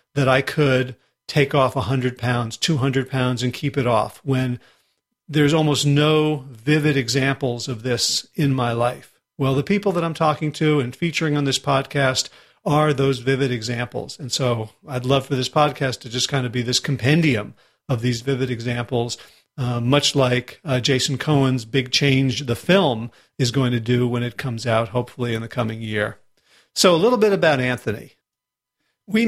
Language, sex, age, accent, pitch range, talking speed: English, male, 40-59, American, 125-155 Hz, 180 wpm